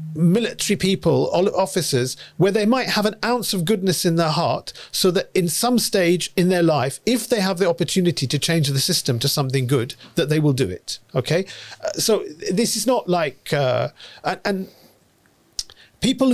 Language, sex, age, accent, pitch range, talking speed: English, male, 40-59, British, 150-210 Hz, 180 wpm